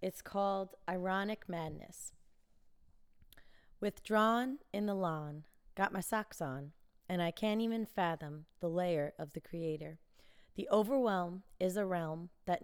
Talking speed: 135 wpm